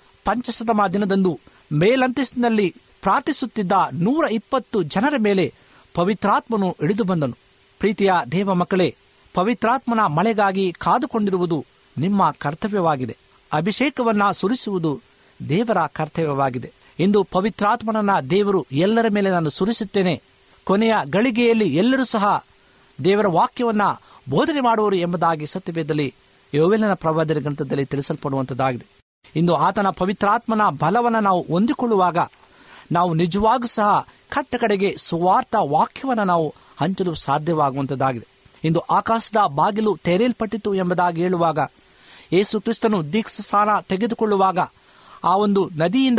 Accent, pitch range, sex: native, 165-225 Hz, male